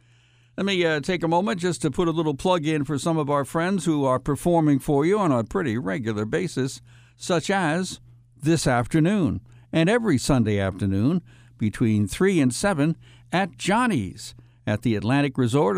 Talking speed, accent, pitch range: 175 wpm, American, 120-160 Hz